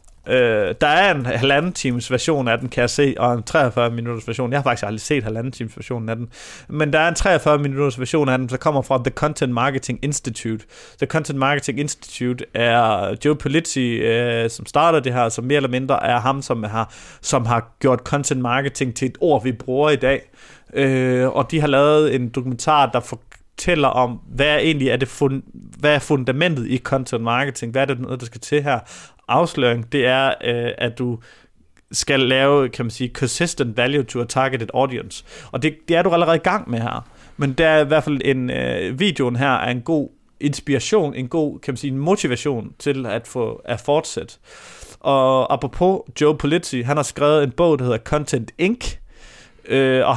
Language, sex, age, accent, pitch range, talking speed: Danish, male, 30-49, native, 125-150 Hz, 200 wpm